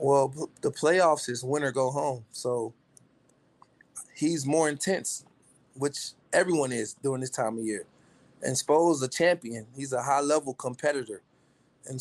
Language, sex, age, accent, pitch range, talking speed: English, male, 20-39, American, 125-150 Hz, 150 wpm